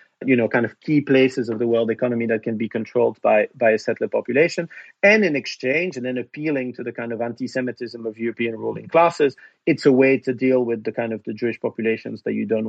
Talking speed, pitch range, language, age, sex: 230 wpm, 120-140 Hz, English, 40-59, male